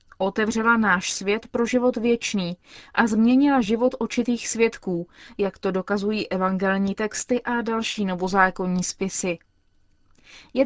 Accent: native